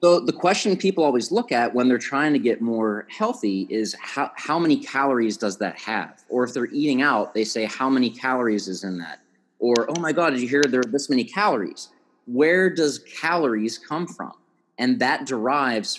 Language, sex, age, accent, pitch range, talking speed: English, male, 30-49, American, 110-145 Hz, 205 wpm